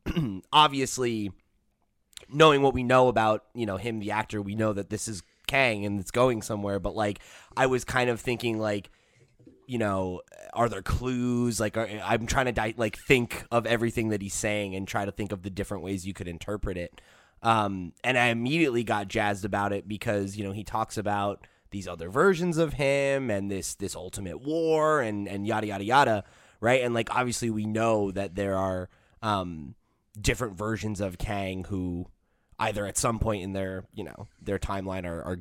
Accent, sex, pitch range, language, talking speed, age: American, male, 100-120 Hz, English, 195 wpm, 20-39